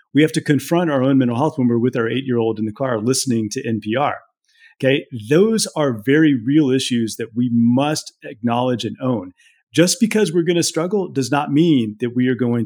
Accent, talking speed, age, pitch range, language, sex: American, 210 wpm, 40-59, 120-160 Hz, English, male